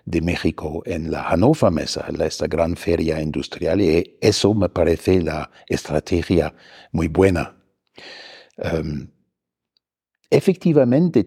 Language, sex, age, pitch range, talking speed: Spanish, male, 60-79, 95-135 Hz, 100 wpm